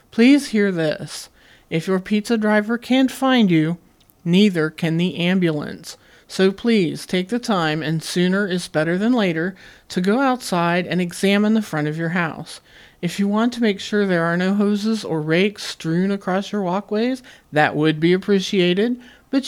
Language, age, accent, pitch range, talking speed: English, 40-59, American, 170-210 Hz, 175 wpm